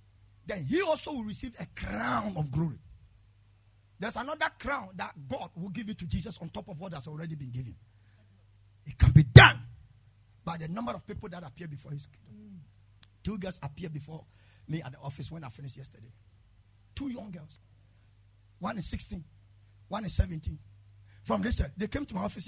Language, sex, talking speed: English, male, 185 wpm